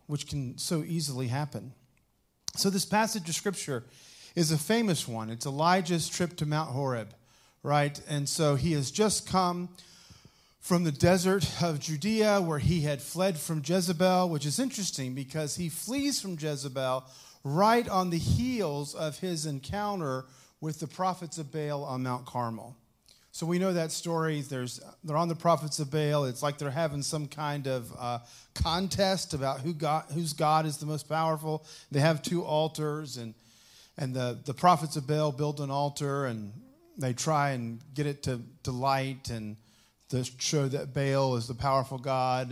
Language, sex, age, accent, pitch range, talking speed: English, male, 40-59, American, 135-170 Hz, 175 wpm